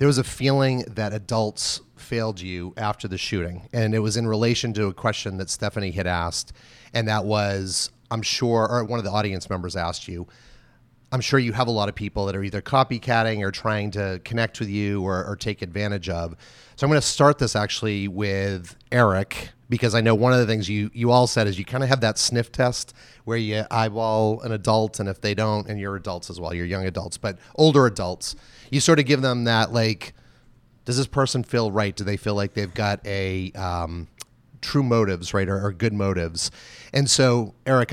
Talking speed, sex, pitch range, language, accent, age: 215 wpm, male, 95-120 Hz, English, American, 30-49